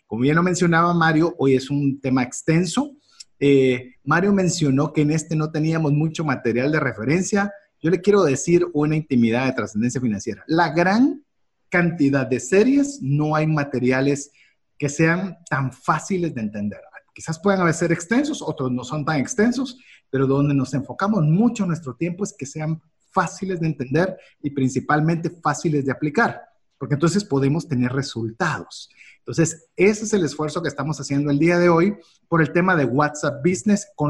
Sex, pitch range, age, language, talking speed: male, 135-175 Hz, 40-59, Spanish, 170 wpm